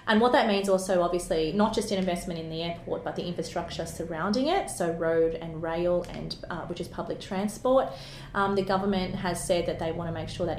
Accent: Australian